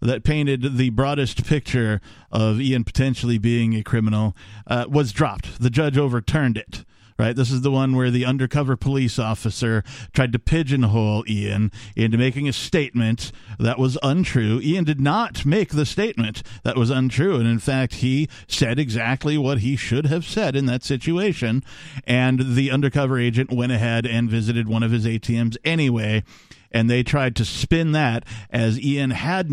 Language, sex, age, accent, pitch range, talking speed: English, male, 50-69, American, 115-150 Hz, 170 wpm